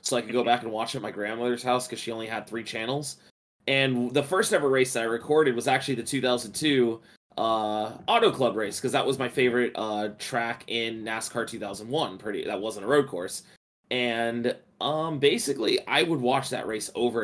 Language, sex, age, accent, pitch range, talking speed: English, male, 20-39, American, 115-135 Hz, 205 wpm